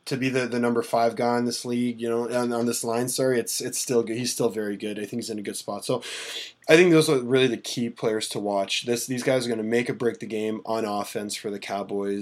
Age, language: 20-39, English